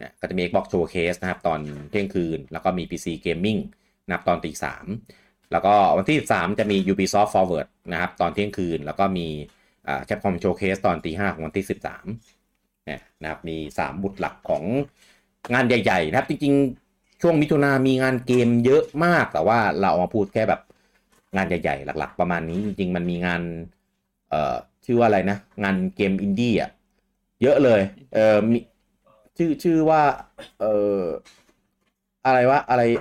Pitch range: 90-120 Hz